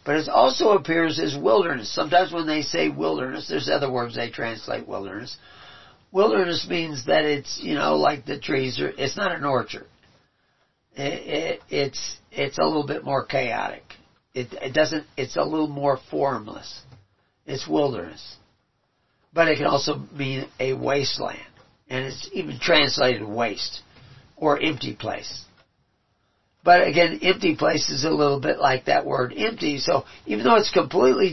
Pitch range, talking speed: 125-155 Hz, 155 wpm